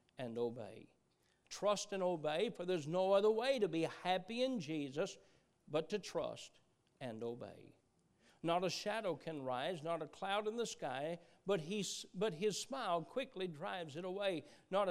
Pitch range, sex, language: 165-225 Hz, male, English